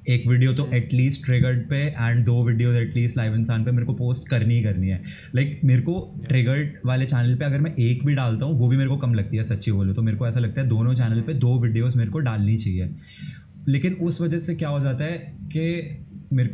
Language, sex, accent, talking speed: Hindi, male, native, 245 wpm